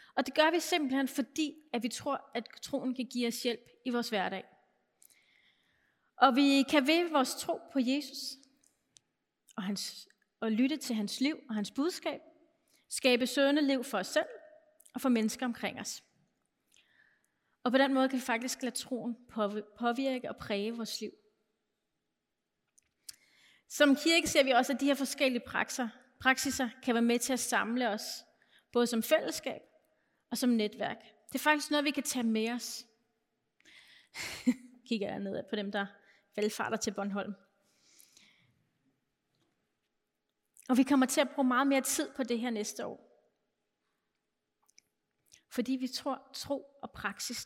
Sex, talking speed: female, 150 wpm